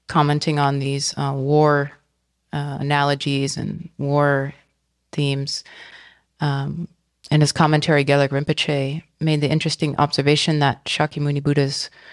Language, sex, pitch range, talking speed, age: English, female, 140-155 Hz, 115 wpm, 30-49